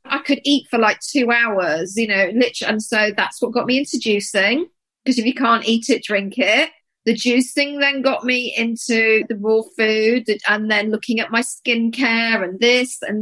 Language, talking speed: English, 195 wpm